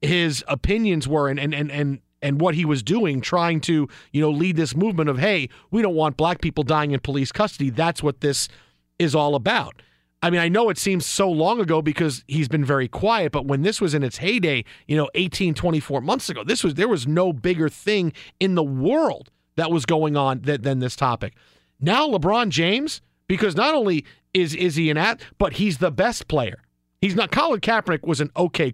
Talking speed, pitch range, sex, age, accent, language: 215 wpm, 145-185 Hz, male, 40-59, American, English